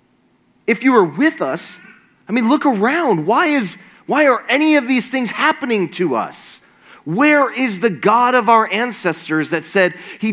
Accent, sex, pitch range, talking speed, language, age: American, male, 150-230 Hz, 175 wpm, English, 30-49